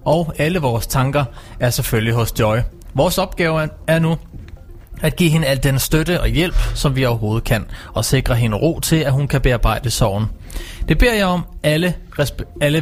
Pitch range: 115-160 Hz